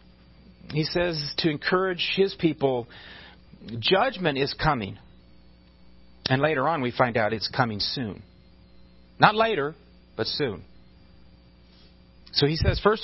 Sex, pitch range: male, 135-195 Hz